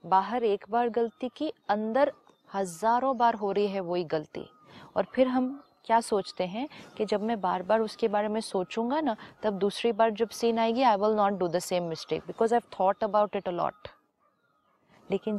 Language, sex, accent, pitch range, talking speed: Hindi, female, native, 195-240 Hz, 195 wpm